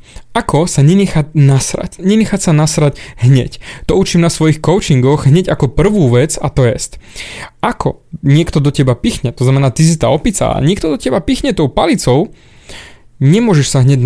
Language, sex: Slovak, male